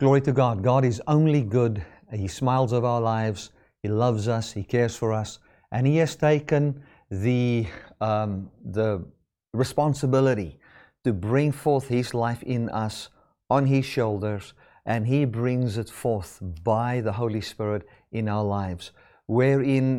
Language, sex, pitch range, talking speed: English, male, 110-135 Hz, 145 wpm